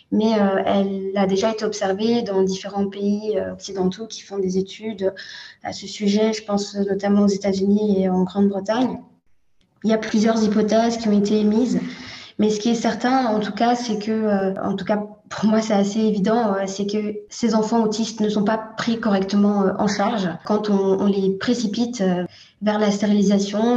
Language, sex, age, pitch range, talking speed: French, female, 20-39, 195-215 Hz, 180 wpm